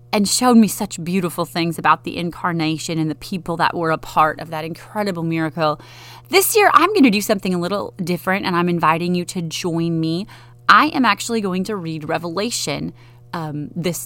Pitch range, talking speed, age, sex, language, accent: 150-185 Hz, 195 wpm, 30-49, female, English, American